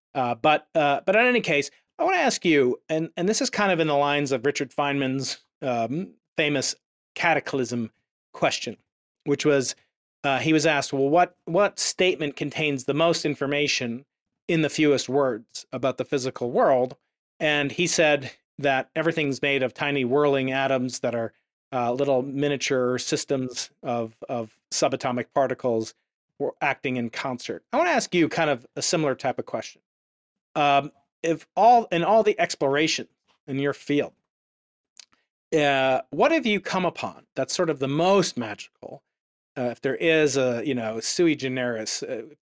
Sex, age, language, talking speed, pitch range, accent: male, 40-59, English, 165 wpm, 130-160 Hz, American